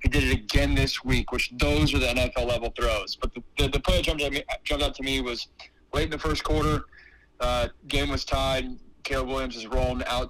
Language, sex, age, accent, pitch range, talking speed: English, male, 30-49, American, 115-130 Hz, 215 wpm